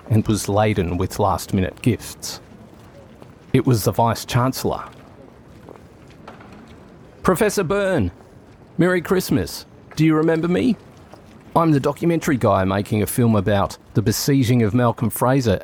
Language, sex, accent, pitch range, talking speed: English, male, Australian, 105-130 Hz, 120 wpm